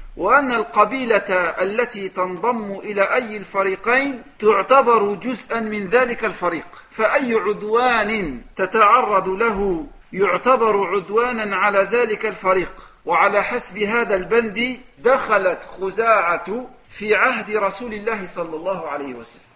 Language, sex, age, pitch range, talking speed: French, male, 50-69, 200-255 Hz, 105 wpm